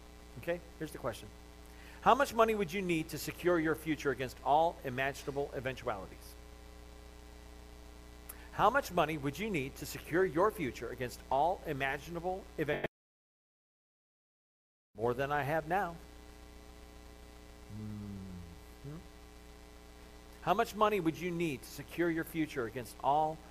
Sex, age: male, 50-69